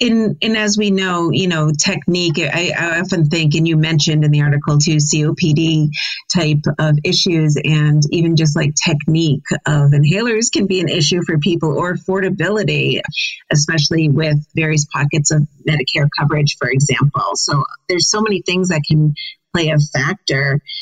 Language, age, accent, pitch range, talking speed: English, 30-49, American, 155-200 Hz, 165 wpm